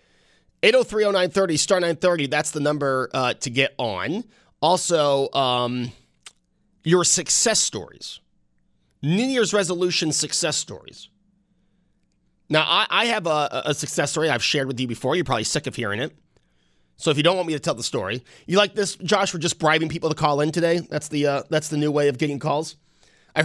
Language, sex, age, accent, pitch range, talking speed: English, male, 30-49, American, 140-175 Hz, 185 wpm